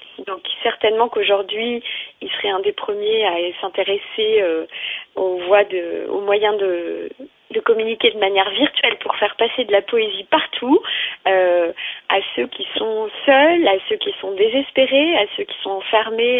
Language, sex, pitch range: French, female, 210-340 Hz